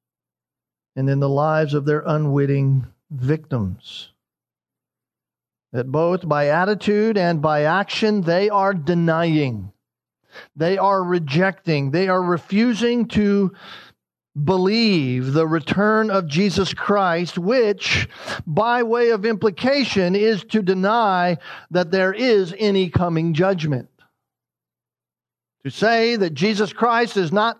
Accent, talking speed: American, 115 wpm